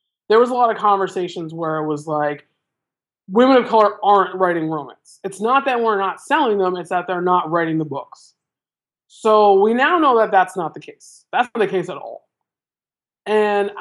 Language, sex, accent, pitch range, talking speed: English, male, American, 165-210 Hz, 200 wpm